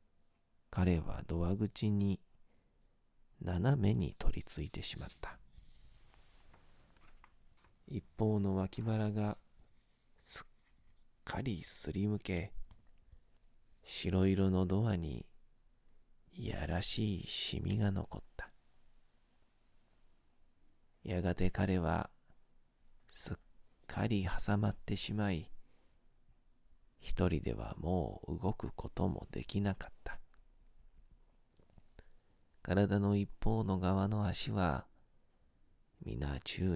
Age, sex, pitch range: 40-59, male, 85-105 Hz